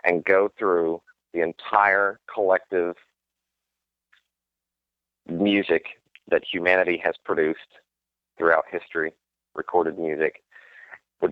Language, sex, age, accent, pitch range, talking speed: English, male, 40-59, American, 75-95 Hz, 85 wpm